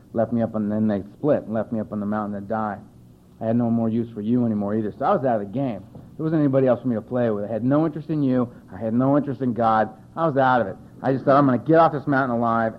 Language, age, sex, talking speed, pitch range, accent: English, 60-79, male, 325 wpm, 105-125 Hz, American